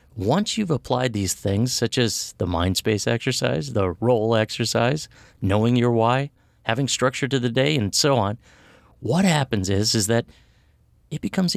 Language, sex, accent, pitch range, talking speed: English, male, American, 95-135 Hz, 165 wpm